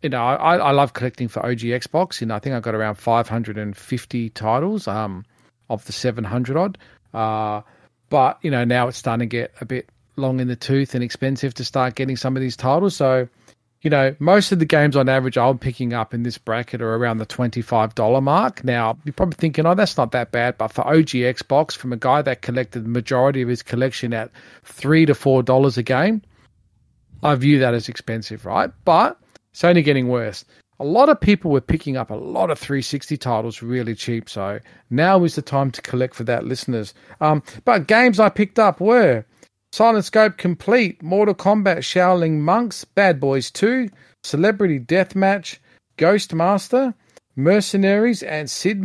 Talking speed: 190 wpm